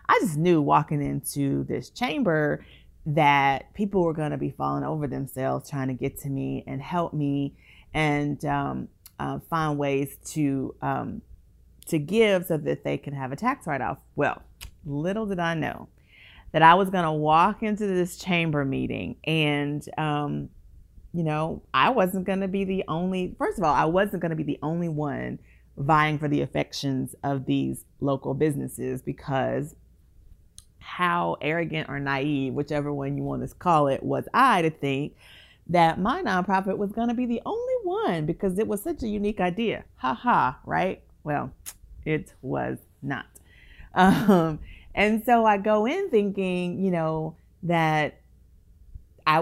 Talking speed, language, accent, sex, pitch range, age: 160 wpm, English, American, female, 135-180 Hz, 40-59